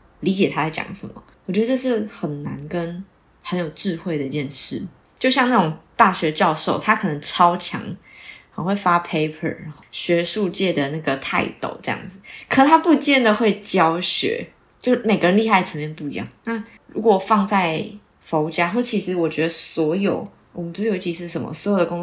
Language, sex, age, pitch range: Chinese, female, 20-39, 160-210 Hz